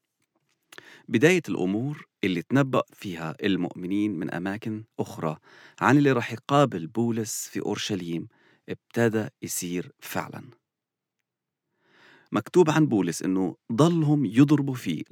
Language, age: English, 40-59